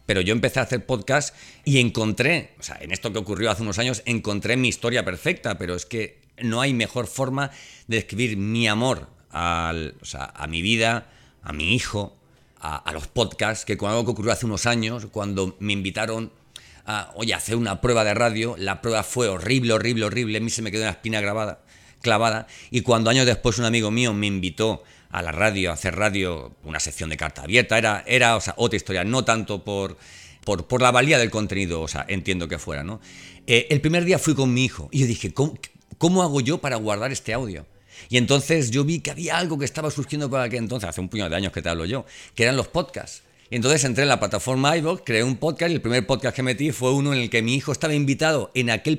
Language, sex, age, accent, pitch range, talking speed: Spanish, male, 40-59, Spanish, 100-130 Hz, 235 wpm